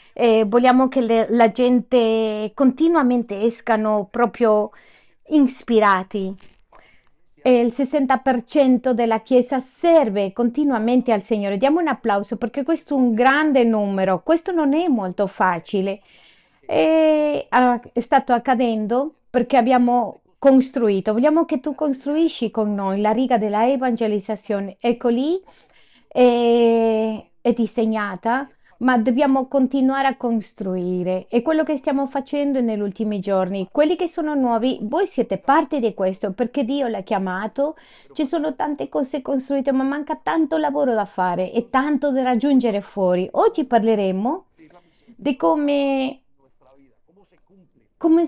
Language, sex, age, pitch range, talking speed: Spanish, female, 30-49, 210-275 Hz, 125 wpm